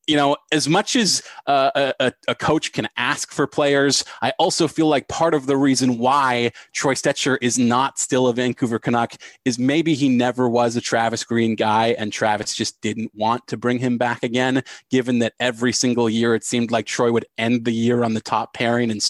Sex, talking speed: male, 210 wpm